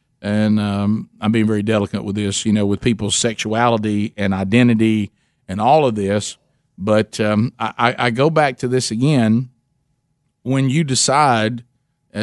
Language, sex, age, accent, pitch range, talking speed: English, male, 50-69, American, 105-125 Hz, 150 wpm